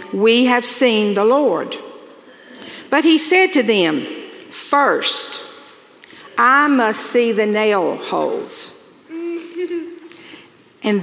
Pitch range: 225-340 Hz